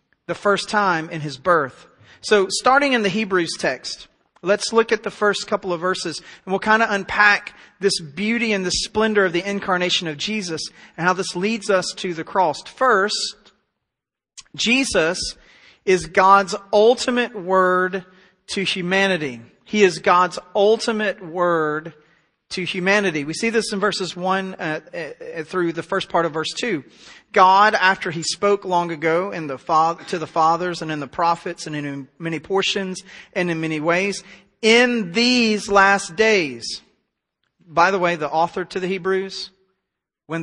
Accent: American